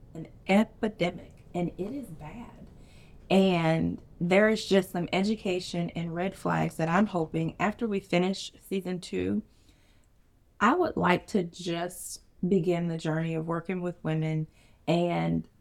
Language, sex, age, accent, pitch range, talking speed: English, female, 30-49, American, 155-185 Hz, 140 wpm